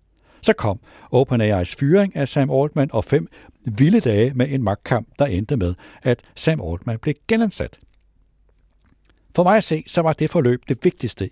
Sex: male